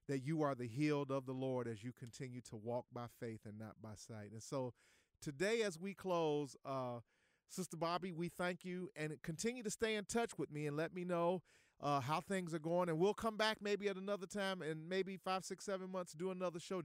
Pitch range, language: 130-180 Hz, English